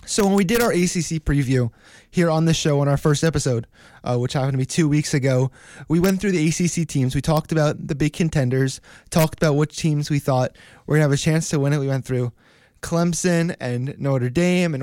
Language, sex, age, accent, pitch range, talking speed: English, male, 20-39, American, 140-170 Hz, 235 wpm